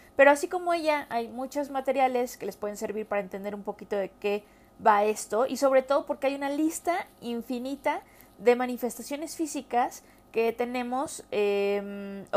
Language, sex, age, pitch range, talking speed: Spanish, female, 30-49, 210-265 Hz, 160 wpm